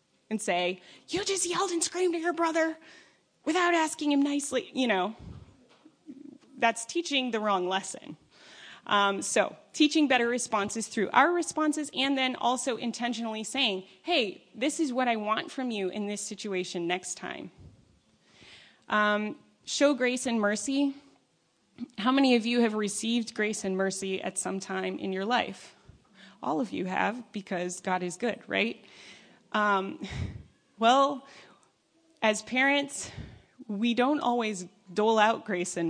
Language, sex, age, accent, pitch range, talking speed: English, female, 20-39, American, 190-265 Hz, 145 wpm